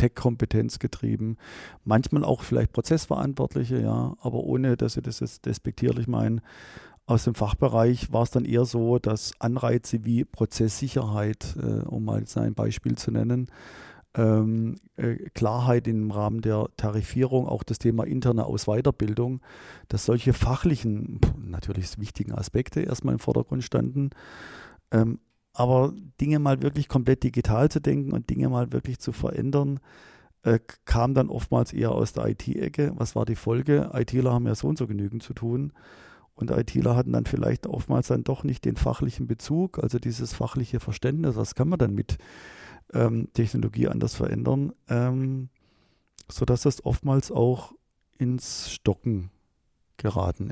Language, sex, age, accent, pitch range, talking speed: German, male, 40-59, German, 105-125 Hz, 145 wpm